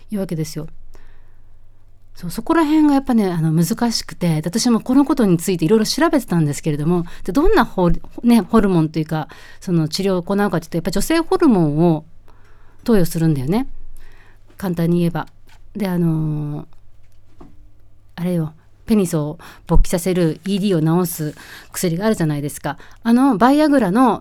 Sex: female